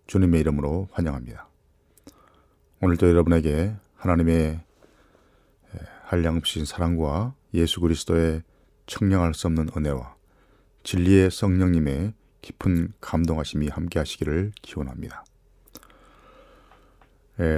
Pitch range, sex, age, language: 80-95 Hz, male, 40-59, Korean